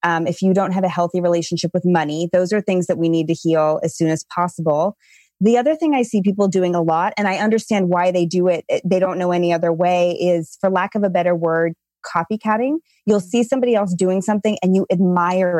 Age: 20-39